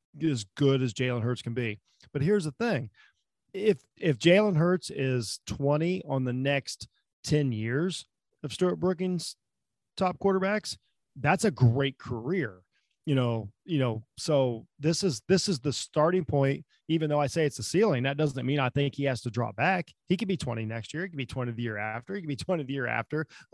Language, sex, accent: English, male, American